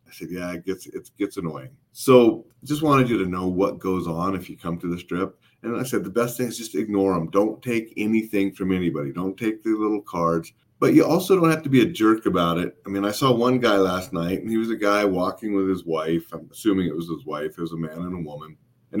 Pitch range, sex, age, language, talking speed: 85-110 Hz, male, 30-49, English, 270 wpm